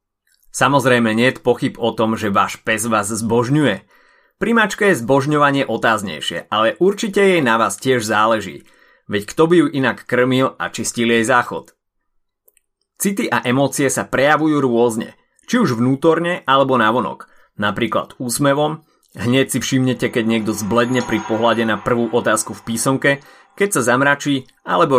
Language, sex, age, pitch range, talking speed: Slovak, male, 30-49, 115-165 Hz, 150 wpm